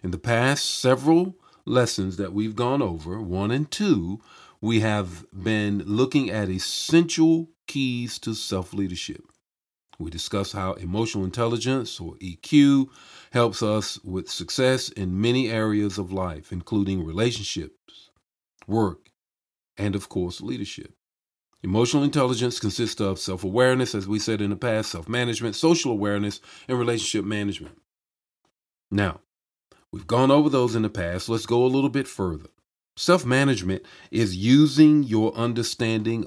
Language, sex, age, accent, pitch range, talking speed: English, male, 50-69, American, 95-130 Hz, 130 wpm